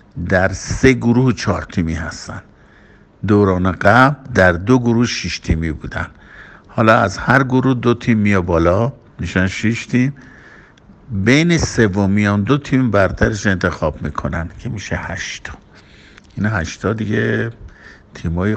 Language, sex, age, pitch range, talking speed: Persian, male, 50-69, 85-105 Hz, 135 wpm